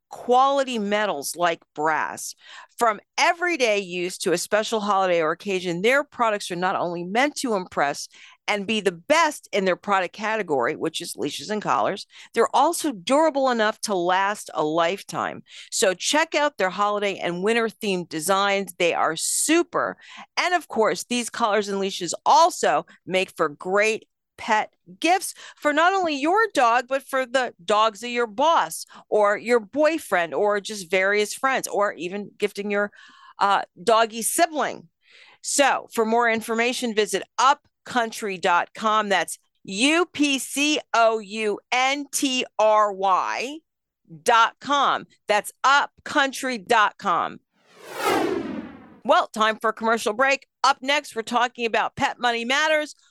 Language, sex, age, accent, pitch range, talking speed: English, female, 50-69, American, 200-275 Hz, 135 wpm